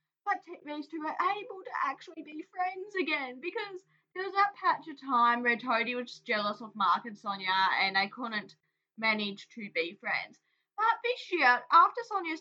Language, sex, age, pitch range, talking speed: English, female, 10-29, 210-310 Hz, 185 wpm